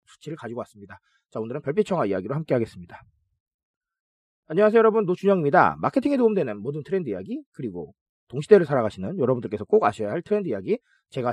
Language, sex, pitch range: Korean, male, 145-230 Hz